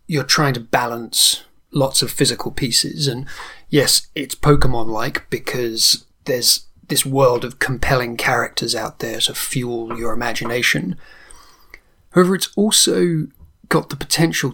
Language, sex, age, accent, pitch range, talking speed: English, male, 30-49, British, 125-150 Hz, 130 wpm